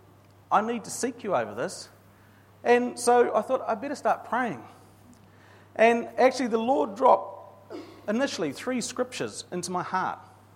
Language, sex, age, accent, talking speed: English, male, 40-59, Australian, 155 wpm